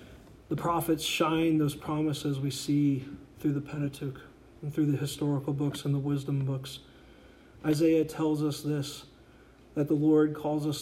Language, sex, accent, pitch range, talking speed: English, male, American, 140-155 Hz, 155 wpm